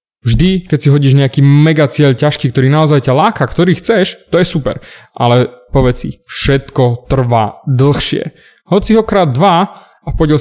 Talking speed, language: 165 wpm, Slovak